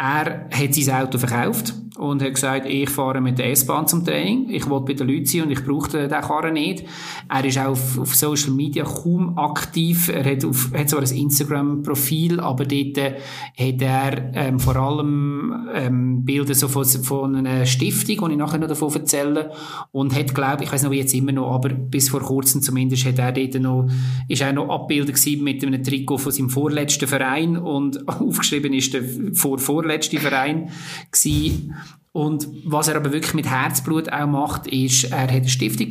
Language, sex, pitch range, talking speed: German, male, 135-150 Hz, 195 wpm